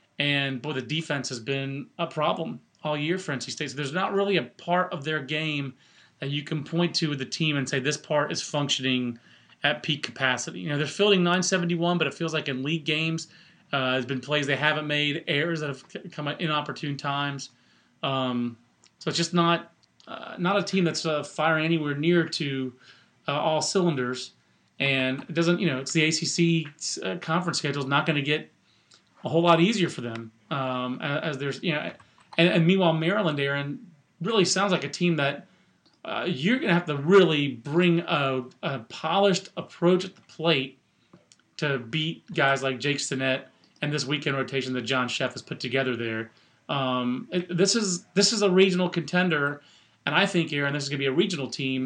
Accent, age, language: American, 30-49, English